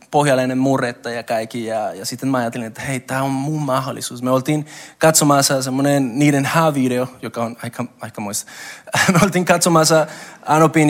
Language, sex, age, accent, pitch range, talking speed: Finnish, male, 20-39, native, 130-165 Hz, 160 wpm